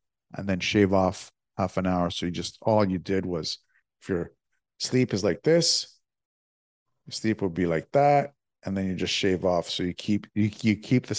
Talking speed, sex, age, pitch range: 210 wpm, male, 50-69, 90-110 Hz